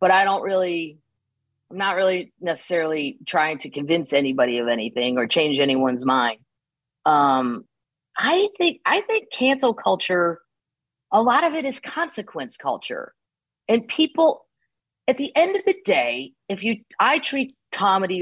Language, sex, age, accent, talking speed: English, female, 40-59, American, 145 wpm